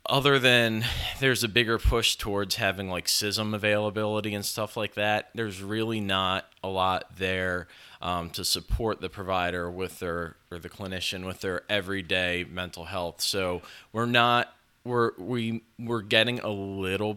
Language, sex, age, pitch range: English, male, 20-39, 90-110 Hz